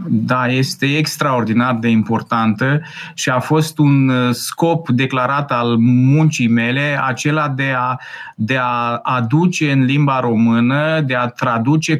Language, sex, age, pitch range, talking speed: Romanian, male, 30-49, 130-160 Hz, 130 wpm